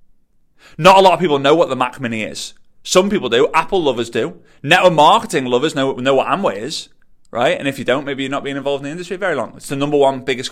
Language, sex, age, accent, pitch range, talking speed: English, male, 30-49, British, 135-190 Hz, 260 wpm